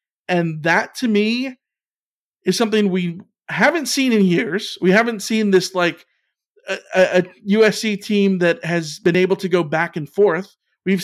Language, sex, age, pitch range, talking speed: English, male, 40-59, 180-220 Hz, 165 wpm